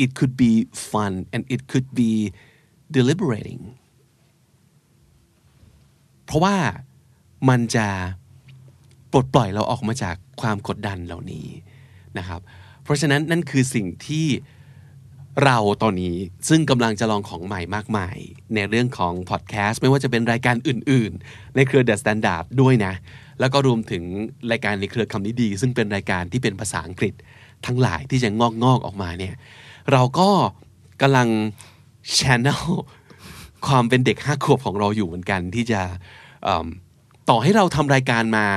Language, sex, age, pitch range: Thai, male, 30-49, 105-135 Hz